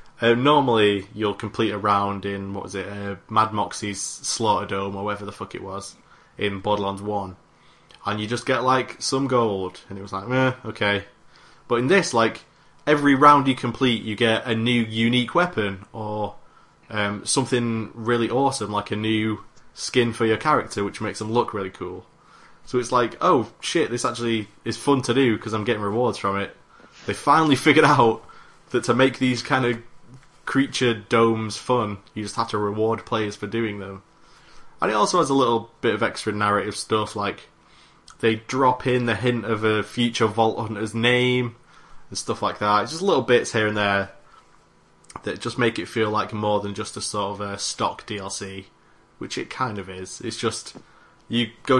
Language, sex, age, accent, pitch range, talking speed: English, male, 20-39, British, 100-120 Hz, 190 wpm